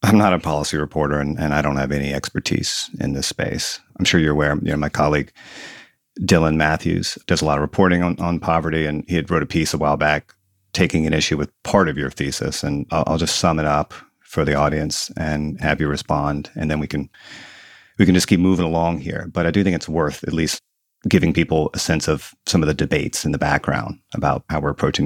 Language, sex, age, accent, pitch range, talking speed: English, male, 30-49, American, 75-90 Hz, 235 wpm